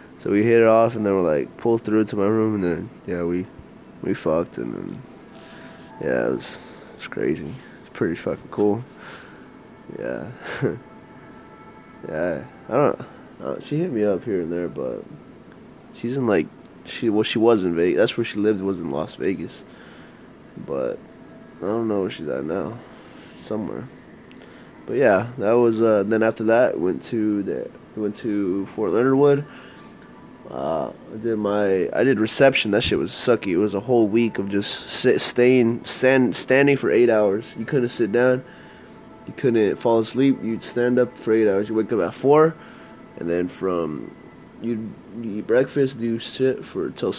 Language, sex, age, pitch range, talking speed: English, male, 20-39, 100-120 Hz, 180 wpm